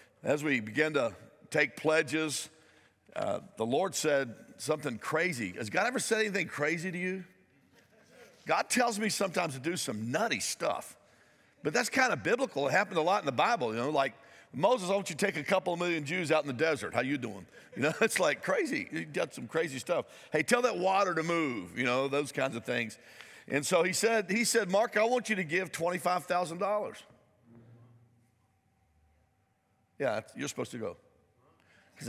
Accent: American